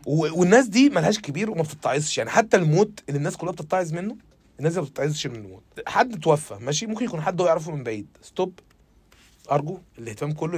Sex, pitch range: male, 155-215 Hz